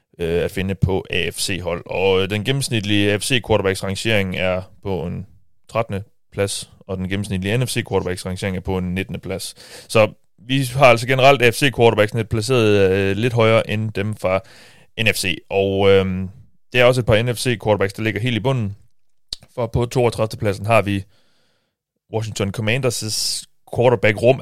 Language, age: Danish, 30-49